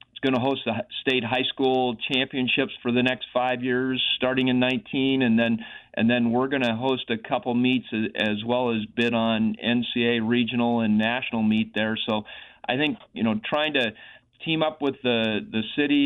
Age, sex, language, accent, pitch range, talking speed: 40-59, male, English, American, 115-130 Hz, 195 wpm